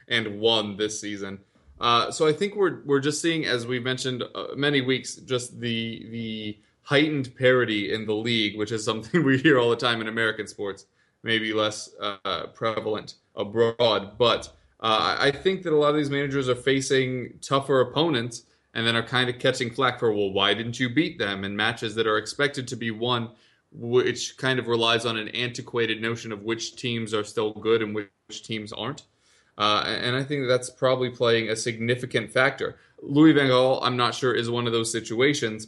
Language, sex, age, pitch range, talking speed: English, male, 20-39, 110-130 Hz, 195 wpm